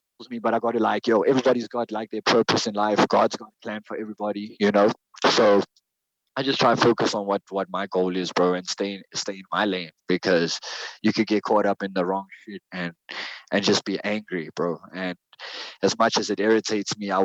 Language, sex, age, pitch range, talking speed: English, male, 20-39, 100-120 Hz, 225 wpm